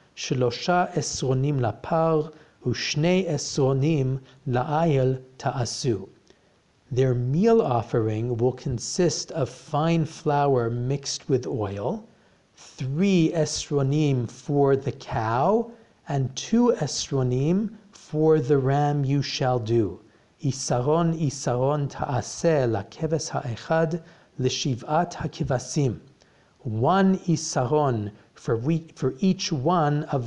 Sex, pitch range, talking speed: male, 125-160 Hz, 100 wpm